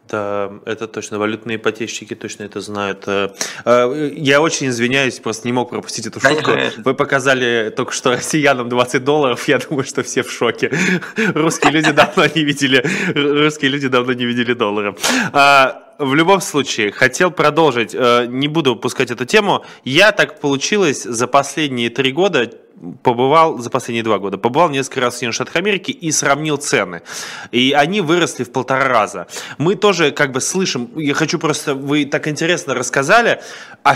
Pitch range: 125-165 Hz